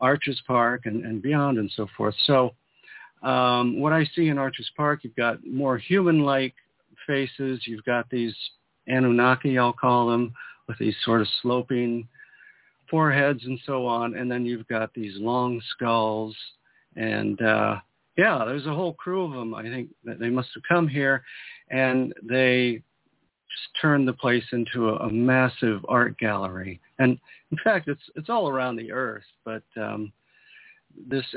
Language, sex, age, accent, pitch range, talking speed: English, male, 50-69, American, 115-145 Hz, 165 wpm